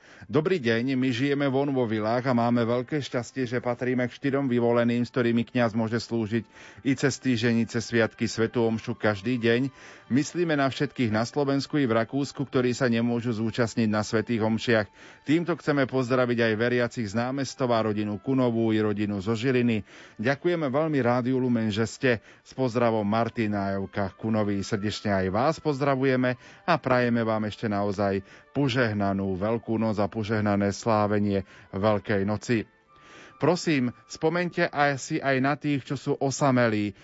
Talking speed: 150 wpm